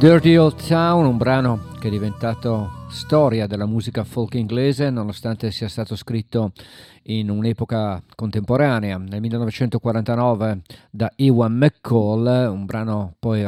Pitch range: 105-120 Hz